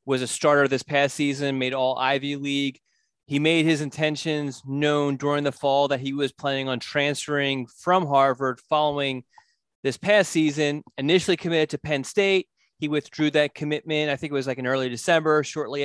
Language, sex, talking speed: English, male, 180 wpm